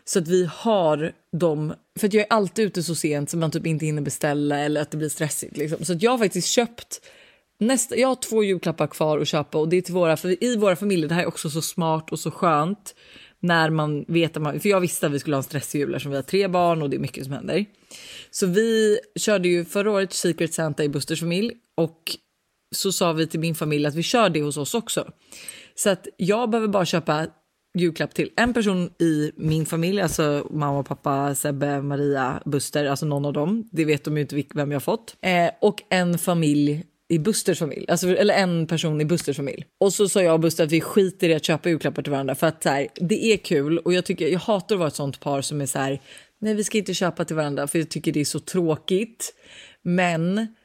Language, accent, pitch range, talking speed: Swedish, native, 150-195 Hz, 240 wpm